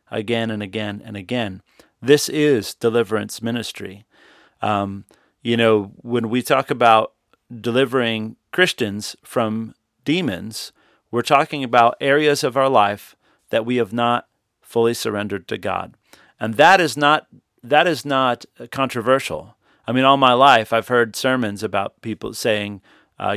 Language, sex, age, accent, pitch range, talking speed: English, male, 40-59, American, 115-140 Hz, 140 wpm